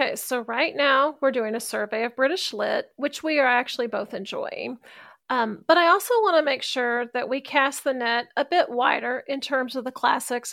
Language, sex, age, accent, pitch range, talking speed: English, female, 40-59, American, 230-280 Hz, 215 wpm